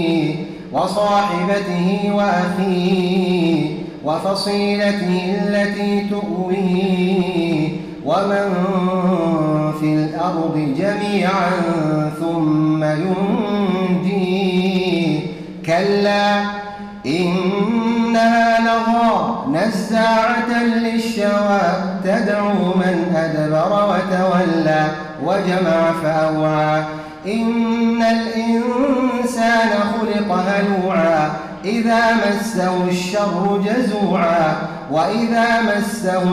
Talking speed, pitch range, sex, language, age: 50 wpm, 175-215 Hz, male, Arabic, 30-49